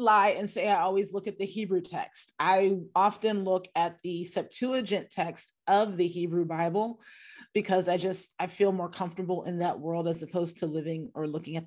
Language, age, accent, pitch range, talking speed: English, 30-49, American, 170-215 Hz, 195 wpm